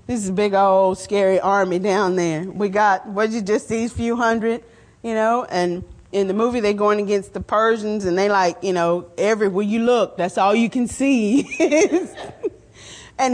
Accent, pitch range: American, 190-260 Hz